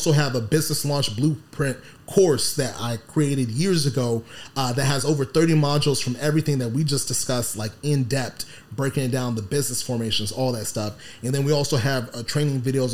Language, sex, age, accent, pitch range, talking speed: English, male, 30-49, American, 120-145 Hz, 200 wpm